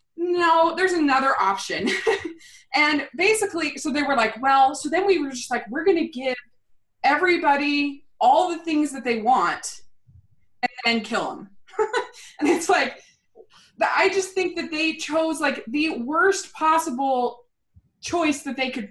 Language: English